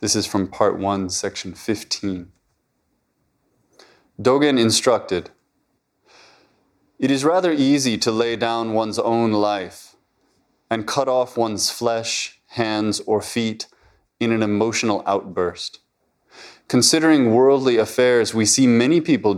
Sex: male